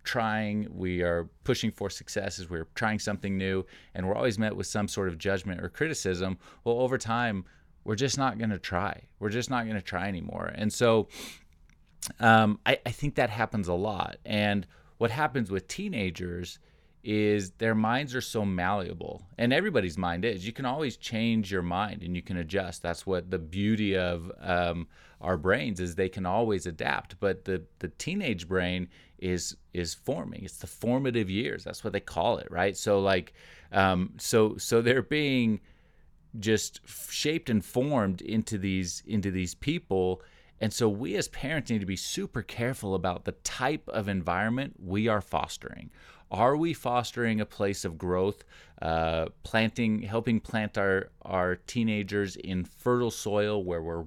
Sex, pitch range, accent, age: male, 90-115 Hz, American, 30-49